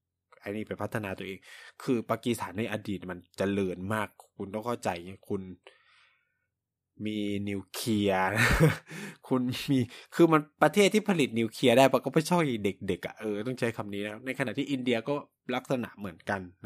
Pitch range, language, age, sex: 100-145 Hz, Thai, 20-39, male